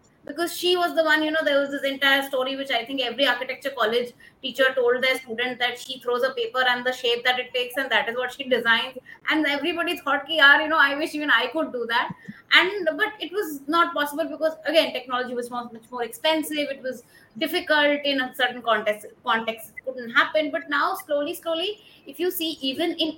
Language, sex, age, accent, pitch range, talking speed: English, female, 20-39, Indian, 250-310 Hz, 225 wpm